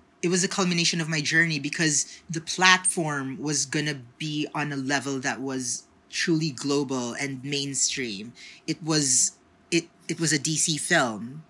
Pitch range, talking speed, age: 140-170 Hz, 155 wpm, 30-49